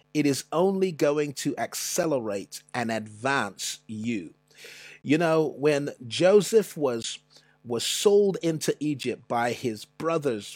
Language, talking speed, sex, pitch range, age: English, 120 wpm, male, 125-175 Hz, 30-49